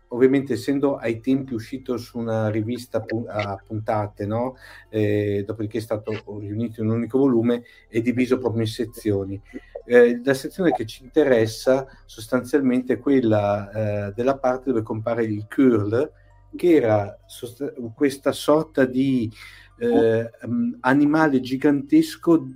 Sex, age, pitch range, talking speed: male, 50-69, 110-135 Hz, 140 wpm